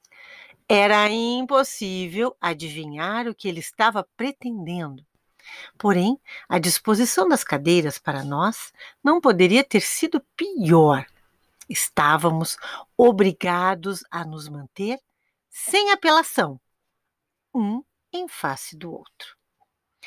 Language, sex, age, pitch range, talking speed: Portuguese, female, 50-69, 165-250 Hz, 95 wpm